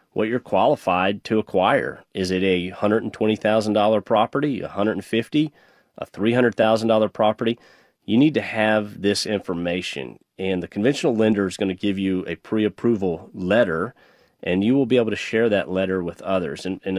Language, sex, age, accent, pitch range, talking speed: English, male, 40-59, American, 90-110 Hz, 160 wpm